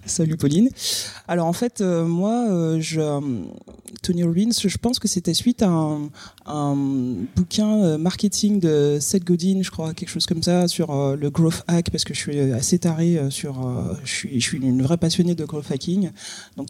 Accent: French